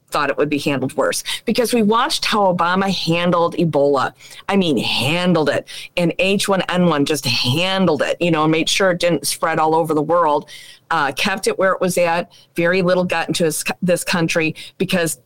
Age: 40-59